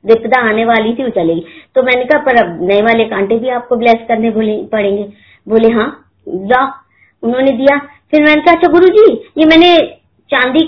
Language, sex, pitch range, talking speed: Hindi, male, 220-305 Hz, 180 wpm